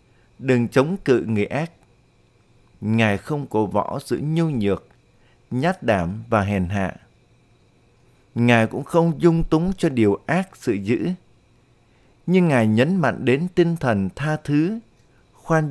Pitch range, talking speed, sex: 110-150 Hz, 140 wpm, male